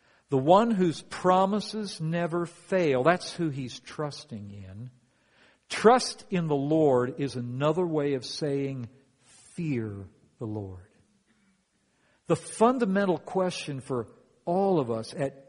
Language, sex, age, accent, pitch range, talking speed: English, male, 50-69, American, 125-170 Hz, 120 wpm